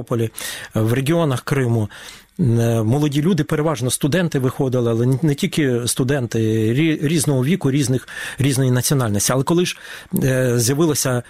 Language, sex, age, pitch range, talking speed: Ukrainian, male, 40-59, 125-165 Hz, 110 wpm